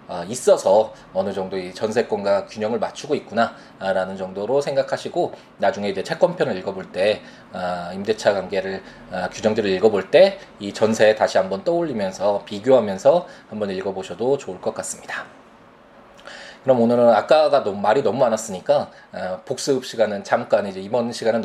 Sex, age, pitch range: male, 20-39, 95-140 Hz